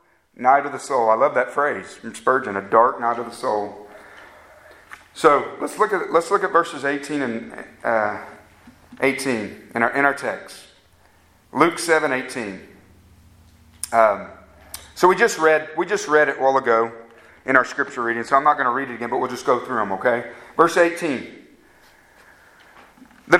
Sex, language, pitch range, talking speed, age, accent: male, English, 120-175 Hz, 180 wpm, 40-59, American